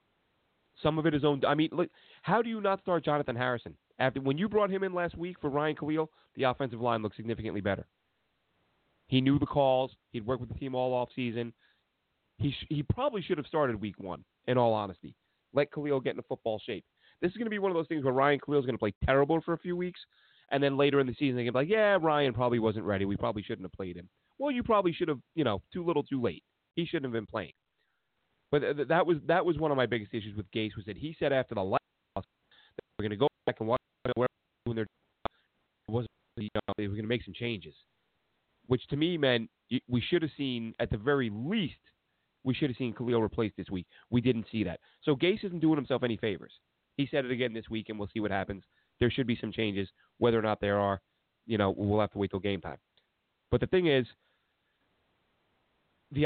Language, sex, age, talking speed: English, male, 30-49, 245 wpm